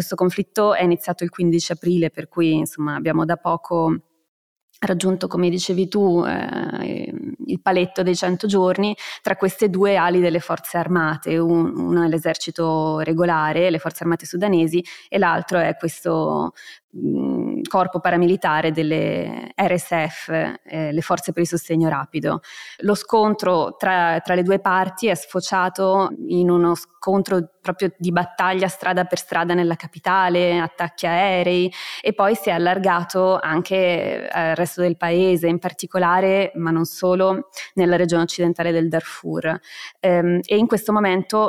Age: 20-39